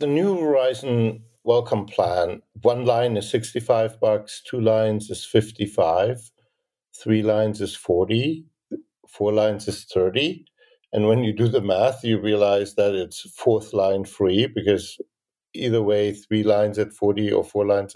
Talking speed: 150 wpm